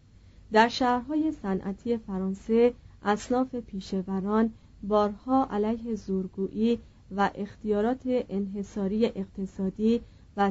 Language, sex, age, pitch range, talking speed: Persian, female, 30-49, 200-245 Hz, 80 wpm